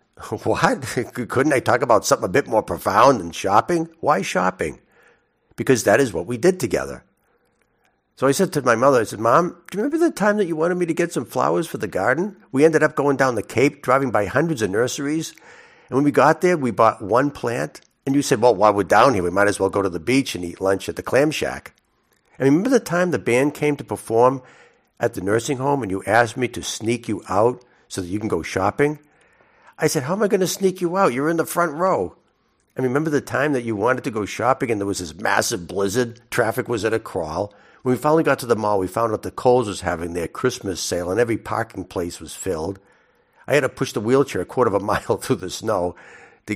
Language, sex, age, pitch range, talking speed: English, male, 60-79, 105-145 Hz, 245 wpm